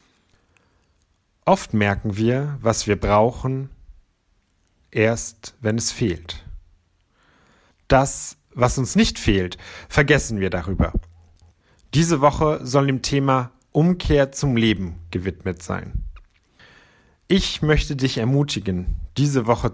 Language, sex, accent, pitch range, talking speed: German, male, German, 90-125 Hz, 105 wpm